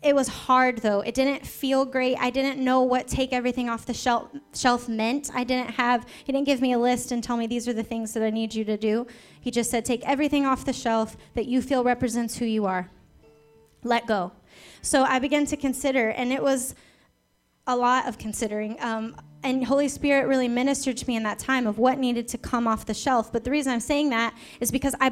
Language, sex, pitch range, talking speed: English, female, 230-265 Hz, 230 wpm